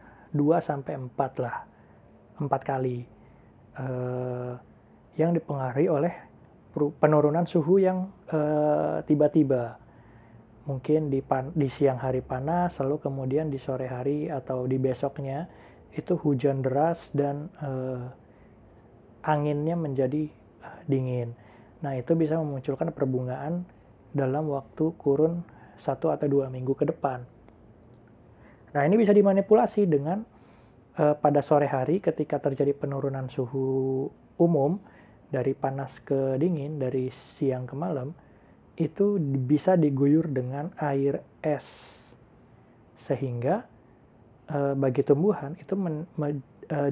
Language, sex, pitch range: Indonesian, male, 130-155 Hz